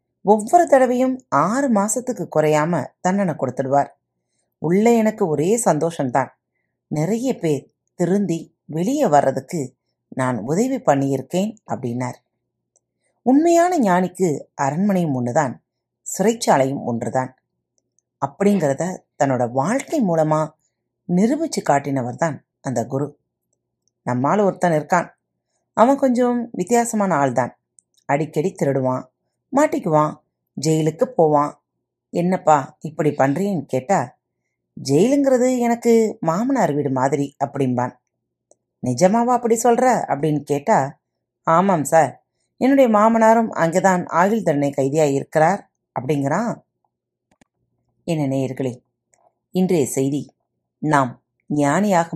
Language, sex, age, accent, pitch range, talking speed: Tamil, female, 30-49, native, 135-200 Hz, 90 wpm